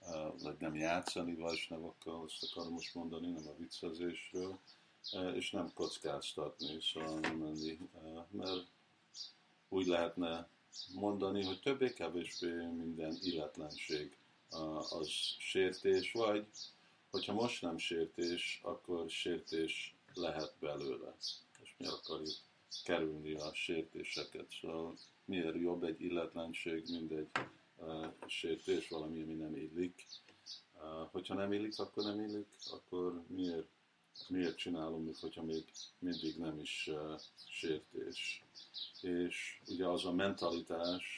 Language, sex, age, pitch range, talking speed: Hungarian, male, 50-69, 80-95 Hz, 110 wpm